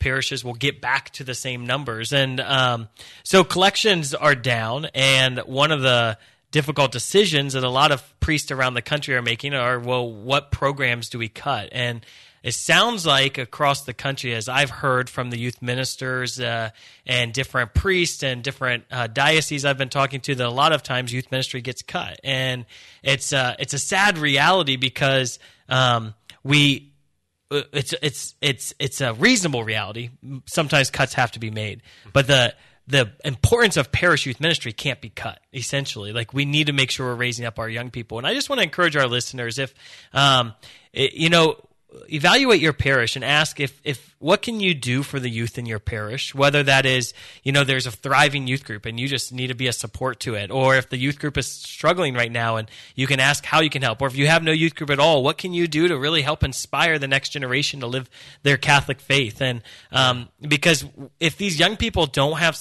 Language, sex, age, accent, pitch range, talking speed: English, male, 30-49, American, 125-145 Hz, 210 wpm